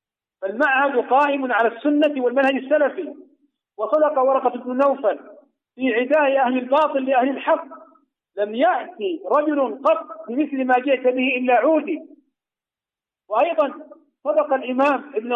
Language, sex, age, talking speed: Arabic, male, 50-69, 115 wpm